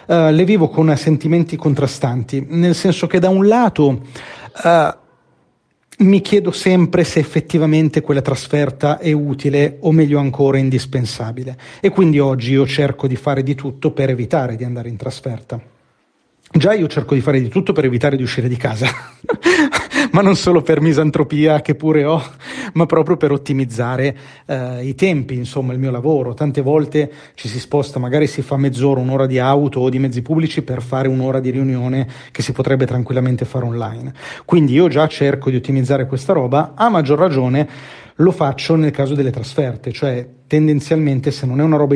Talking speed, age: 175 wpm, 40-59